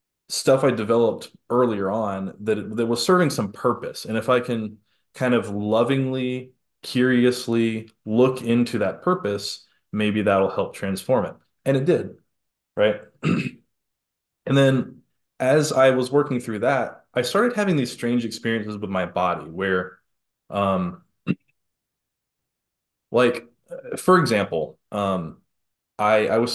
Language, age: English, 20-39